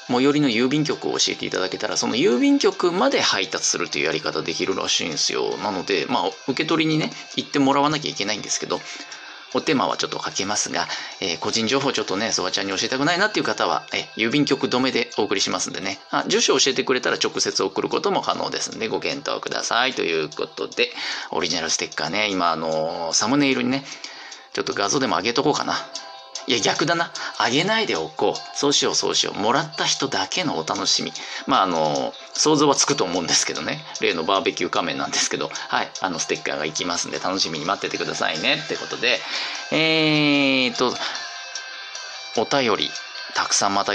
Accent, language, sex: native, Japanese, male